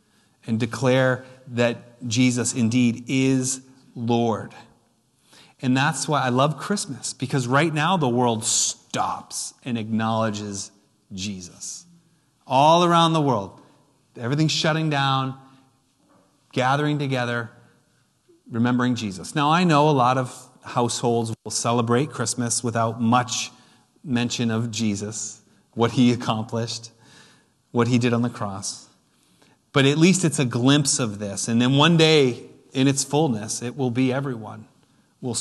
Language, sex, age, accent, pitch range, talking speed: English, male, 30-49, American, 115-145 Hz, 130 wpm